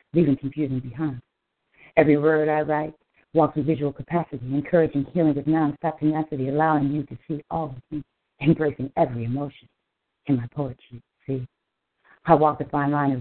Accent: American